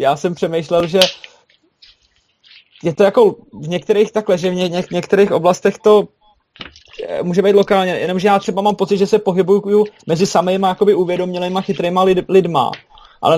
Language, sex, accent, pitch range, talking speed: Czech, male, native, 160-195 Hz, 160 wpm